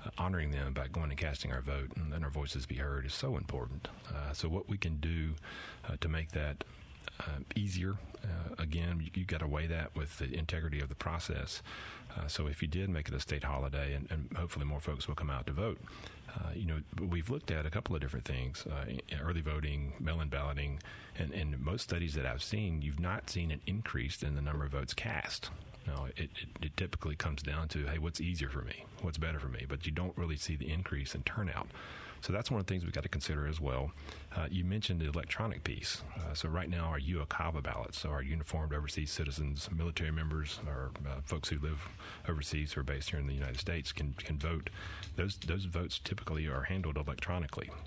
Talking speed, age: 225 wpm, 40-59